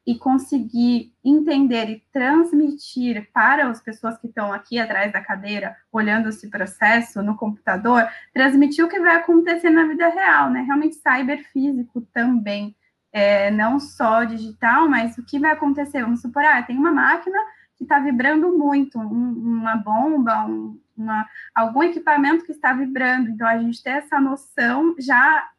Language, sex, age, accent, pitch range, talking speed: Portuguese, female, 20-39, Brazilian, 225-290 Hz, 155 wpm